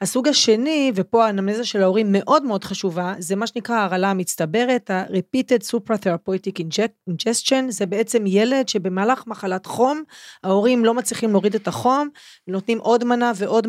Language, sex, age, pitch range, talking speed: Hebrew, female, 30-49, 195-240 Hz, 145 wpm